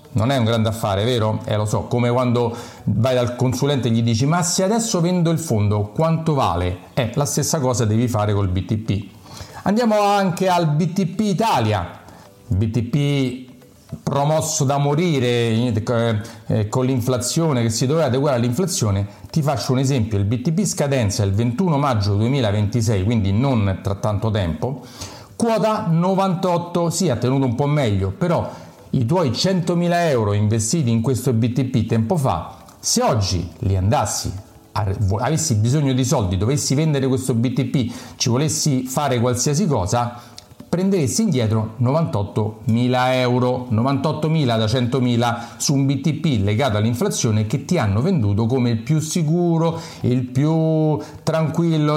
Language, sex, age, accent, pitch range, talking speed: Italian, male, 40-59, native, 110-155 Hz, 150 wpm